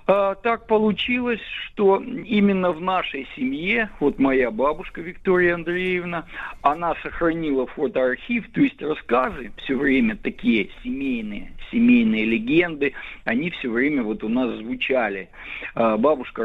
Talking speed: 115 wpm